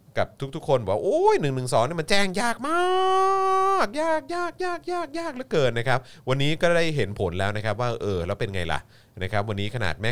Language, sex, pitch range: Thai, male, 90-120 Hz